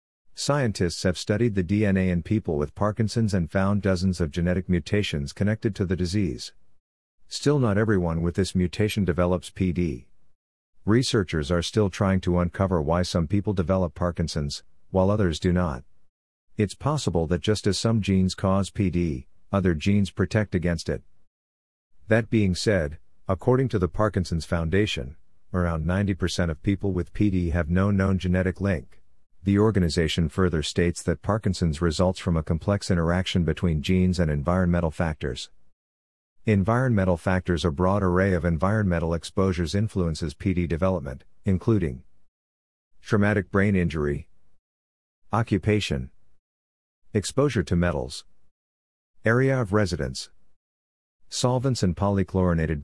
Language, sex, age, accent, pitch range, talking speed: English, male, 50-69, American, 85-100 Hz, 130 wpm